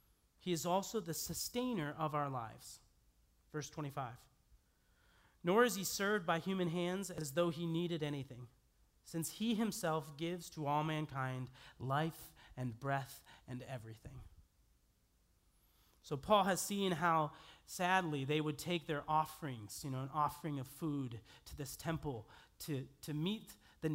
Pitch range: 125-170 Hz